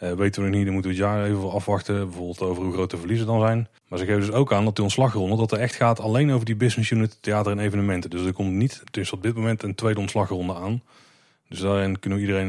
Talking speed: 285 wpm